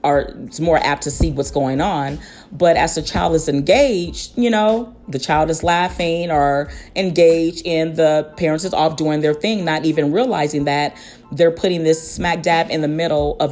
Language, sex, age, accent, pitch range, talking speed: English, female, 40-59, American, 145-180 Hz, 195 wpm